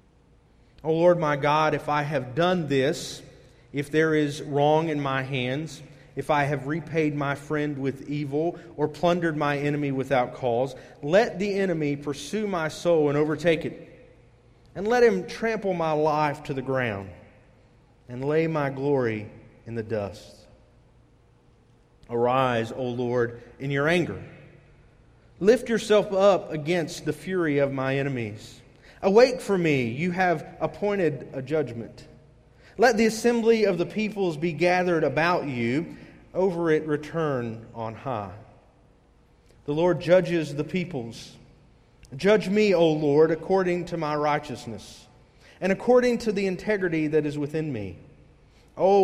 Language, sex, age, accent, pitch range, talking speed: English, male, 40-59, American, 125-170 Hz, 140 wpm